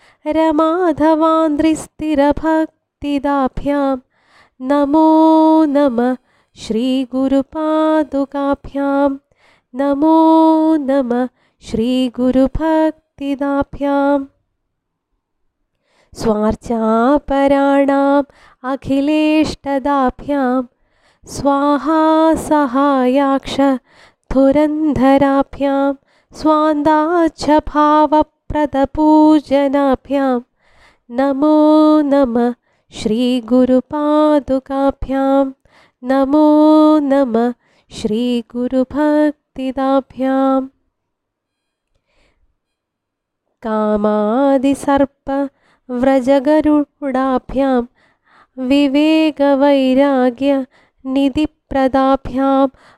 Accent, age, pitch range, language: native, 20-39, 265-305 Hz, Malayalam